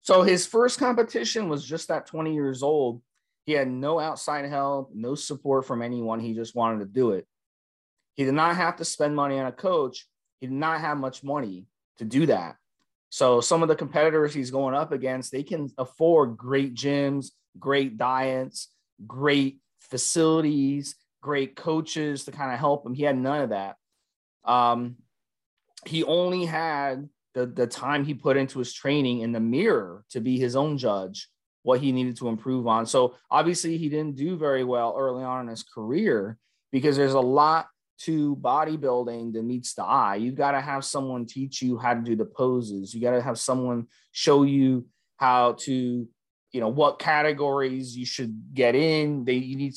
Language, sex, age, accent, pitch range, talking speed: English, male, 30-49, American, 125-150 Hz, 185 wpm